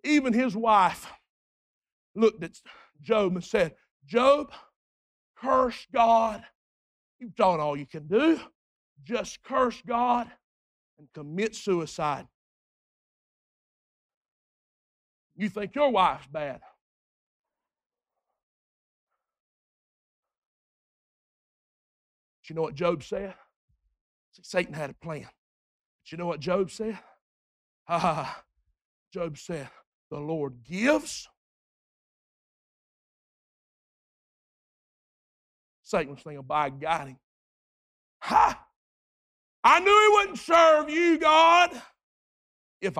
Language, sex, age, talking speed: English, male, 50-69, 90 wpm